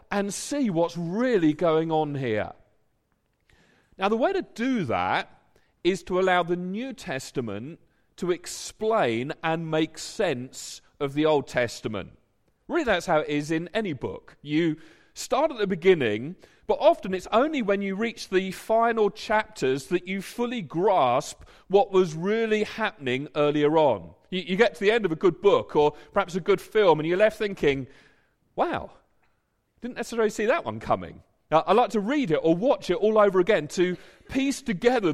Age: 40-59